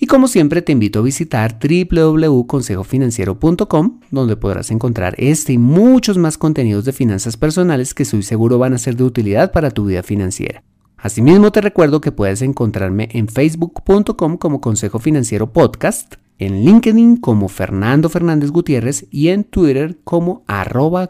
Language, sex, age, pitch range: Spanish, male, 30-49, 110-170 Hz